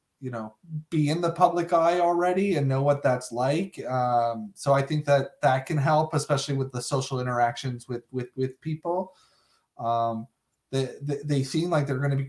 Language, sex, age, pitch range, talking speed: English, male, 20-39, 130-155 Hz, 195 wpm